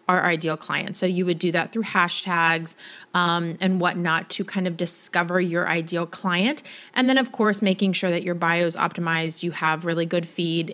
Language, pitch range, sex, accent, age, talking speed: English, 175-210 Hz, female, American, 20-39, 200 wpm